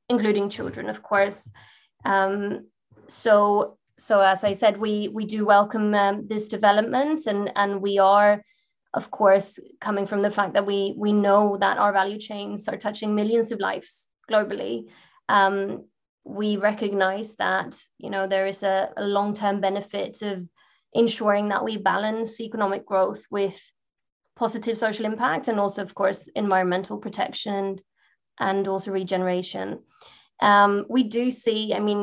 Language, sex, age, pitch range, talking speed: English, female, 20-39, 195-215 Hz, 150 wpm